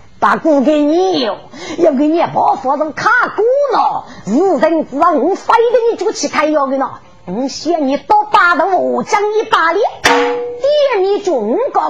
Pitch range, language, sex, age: 310-450 Hz, Chinese, female, 40-59